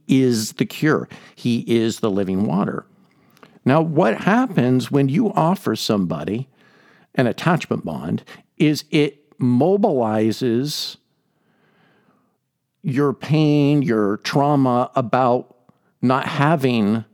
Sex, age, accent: male, 50-69, American